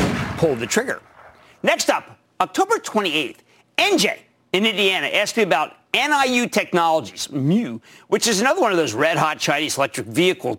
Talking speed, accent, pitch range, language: 145 wpm, American, 135-200 Hz, English